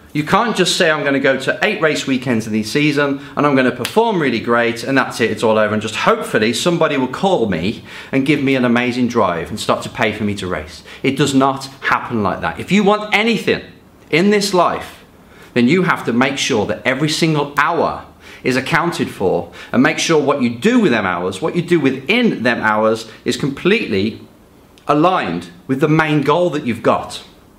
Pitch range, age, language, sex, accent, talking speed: 115-175 Hz, 30-49, English, male, British, 220 wpm